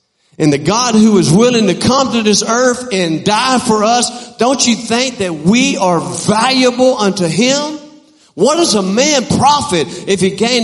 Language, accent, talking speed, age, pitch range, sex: English, American, 180 wpm, 50-69, 125-210 Hz, male